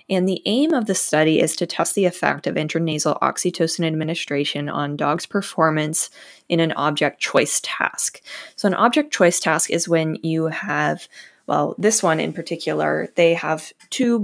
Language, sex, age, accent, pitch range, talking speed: English, female, 20-39, American, 160-205 Hz, 170 wpm